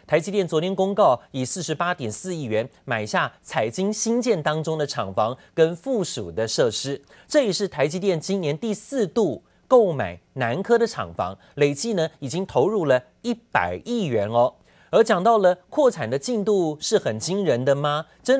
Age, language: 30-49, Chinese